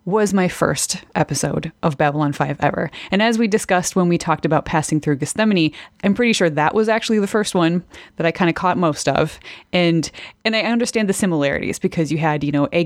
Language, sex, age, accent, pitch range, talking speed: English, female, 20-39, American, 150-190 Hz, 220 wpm